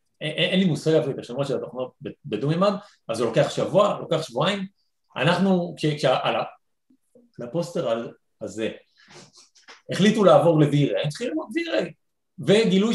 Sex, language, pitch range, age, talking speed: male, Hebrew, 135-190 Hz, 40-59, 115 wpm